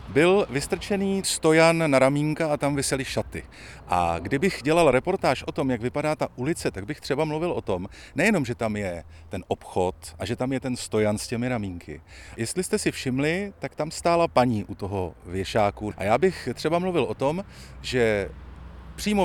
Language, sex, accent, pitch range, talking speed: Czech, male, native, 100-160 Hz, 185 wpm